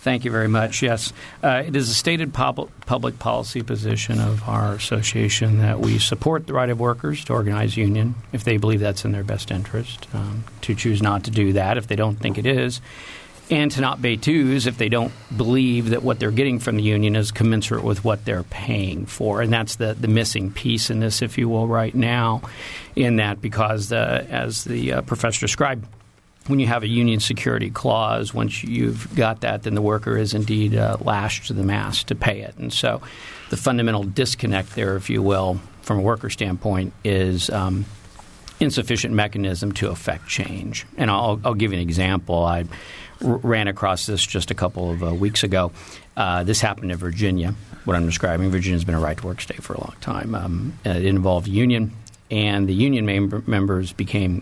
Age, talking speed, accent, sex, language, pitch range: 50-69, 205 wpm, American, male, English, 95-120 Hz